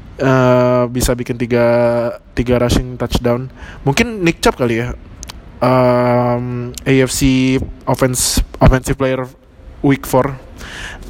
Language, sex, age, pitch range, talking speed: Indonesian, male, 20-39, 115-140 Hz, 110 wpm